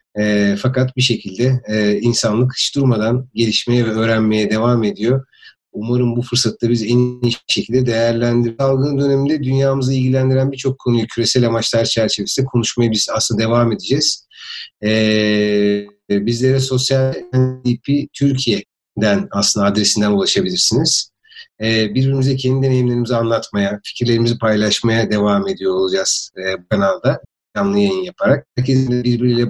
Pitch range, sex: 110-130 Hz, male